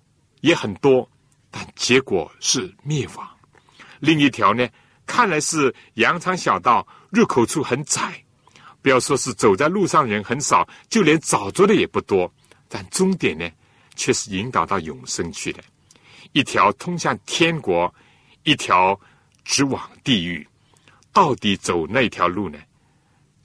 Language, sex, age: Chinese, male, 60-79